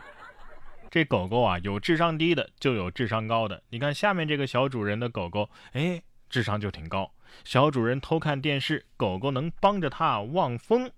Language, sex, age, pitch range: Chinese, male, 20-39, 110-155 Hz